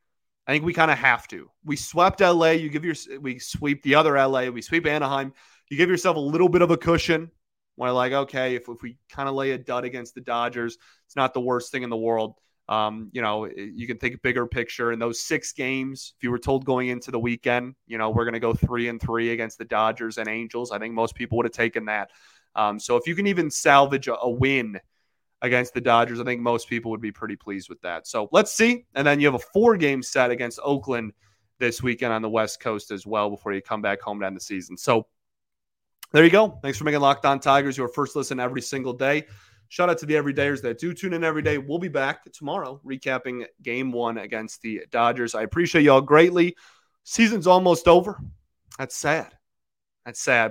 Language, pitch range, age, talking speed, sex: English, 115-140 Hz, 20-39, 230 wpm, male